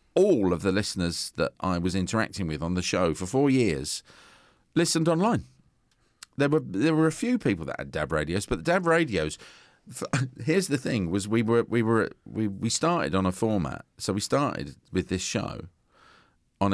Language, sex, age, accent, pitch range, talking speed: English, male, 40-59, British, 85-115 Hz, 195 wpm